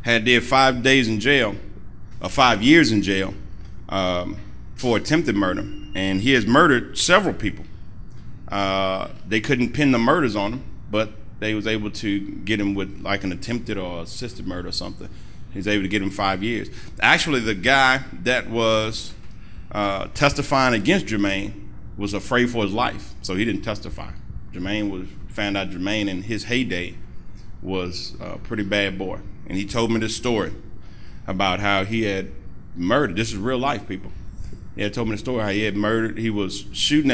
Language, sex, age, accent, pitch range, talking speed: English, male, 30-49, American, 95-115 Hz, 180 wpm